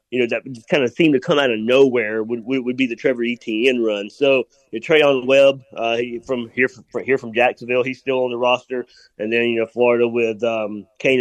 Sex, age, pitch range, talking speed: male, 30-49, 115-145 Hz, 235 wpm